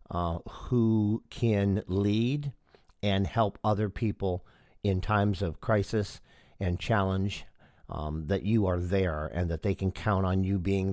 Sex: male